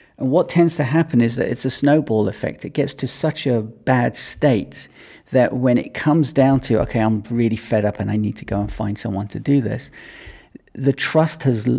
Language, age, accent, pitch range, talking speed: English, 40-59, British, 110-130 Hz, 220 wpm